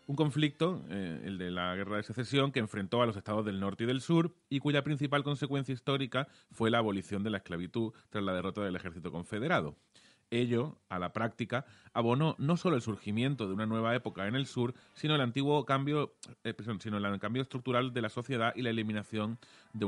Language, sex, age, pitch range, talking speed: Spanish, male, 30-49, 100-130 Hz, 195 wpm